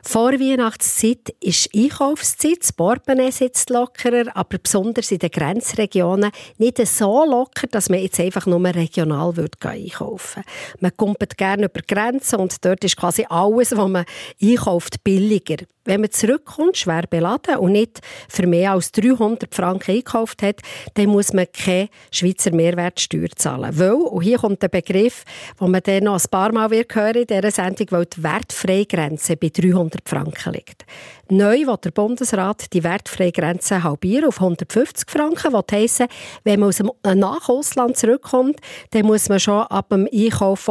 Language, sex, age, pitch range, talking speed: German, female, 50-69, 180-235 Hz, 165 wpm